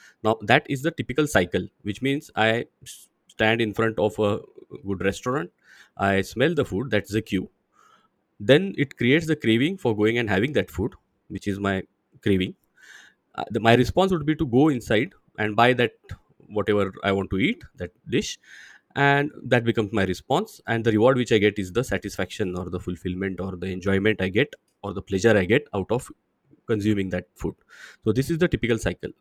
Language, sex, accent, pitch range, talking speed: English, male, Indian, 100-140 Hz, 195 wpm